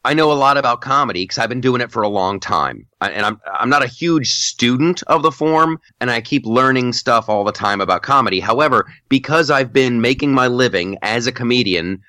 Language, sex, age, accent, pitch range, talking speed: English, male, 30-49, American, 105-140 Hz, 230 wpm